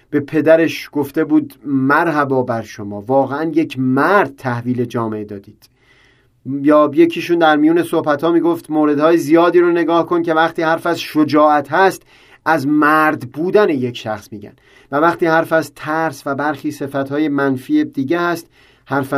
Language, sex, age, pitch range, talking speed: Persian, male, 30-49, 135-170 Hz, 155 wpm